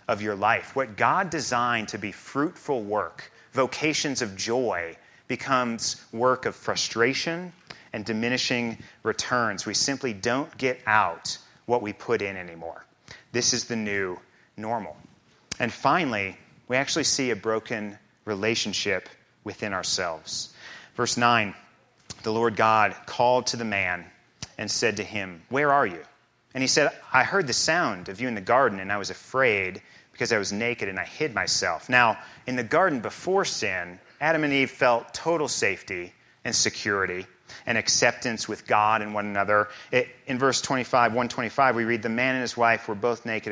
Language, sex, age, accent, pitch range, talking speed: English, male, 30-49, American, 105-130 Hz, 165 wpm